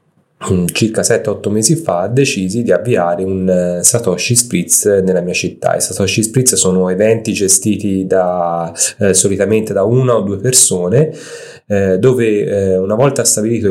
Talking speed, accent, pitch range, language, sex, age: 150 wpm, native, 90-110 Hz, Italian, male, 30-49